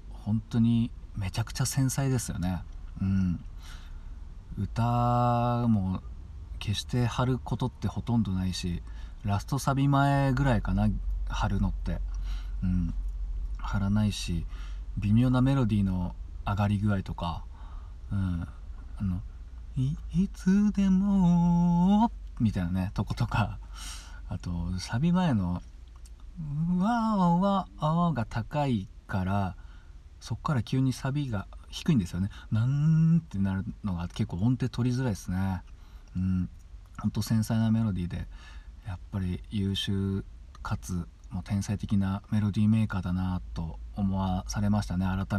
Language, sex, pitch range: Japanese, male, 85-120 Hz